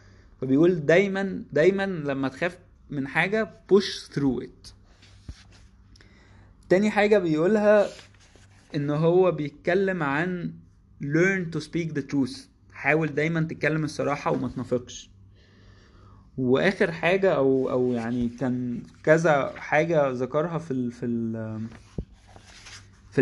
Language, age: Arabic, 20-39